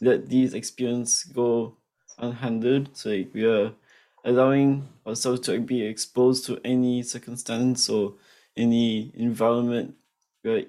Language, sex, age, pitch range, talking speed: English, male, 20-39, 110-125 Hz, 110 wpm